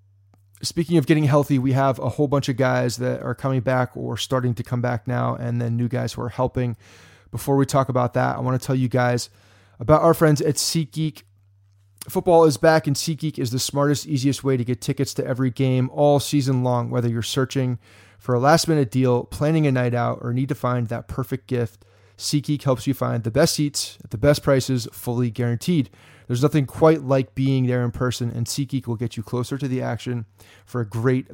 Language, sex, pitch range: English, male, 120-140 Hz